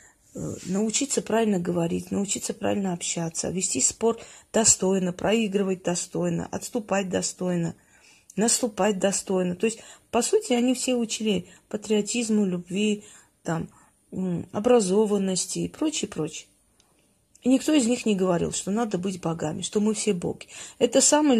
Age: 30-49